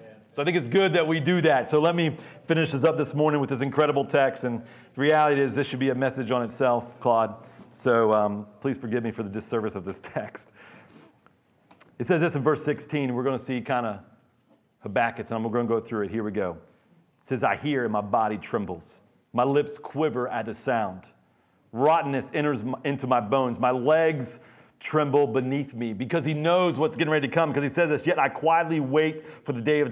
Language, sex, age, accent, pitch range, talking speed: English, male, 40-59, American, 120-155 Hz, 225 wpm